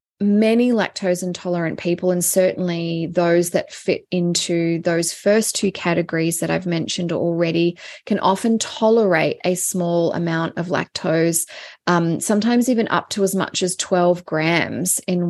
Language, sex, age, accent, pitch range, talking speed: English, female, 20-39, Australian, 165-195 Hz, 145 wpm